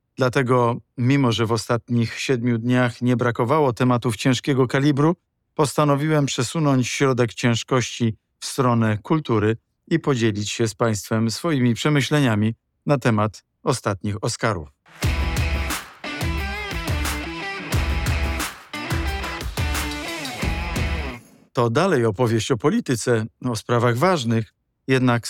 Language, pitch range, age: Polish, 110-130 Hz, 50-69